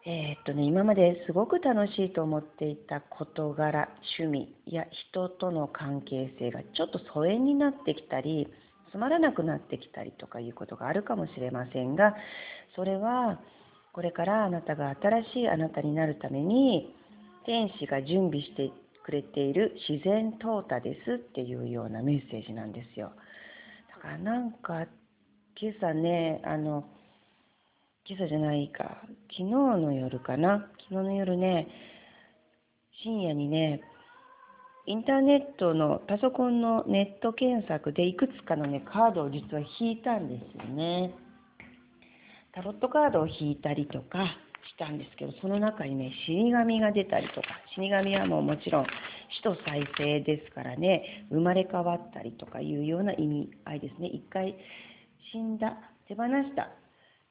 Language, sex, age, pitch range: English, female, 40-59, 150-215 Hz